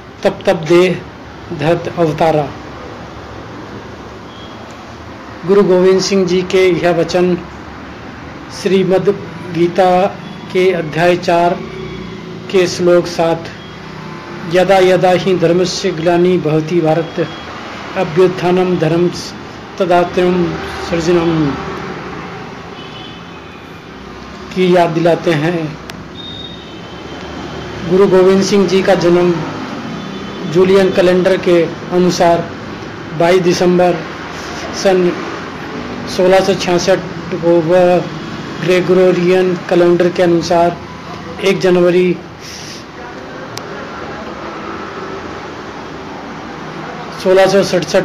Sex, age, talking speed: male, 50-69, 70 wpm